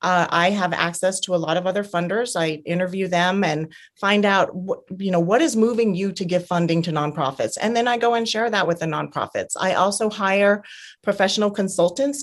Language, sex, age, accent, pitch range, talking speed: English, female, 30-49, American, 170-210 Hz, 210 wpm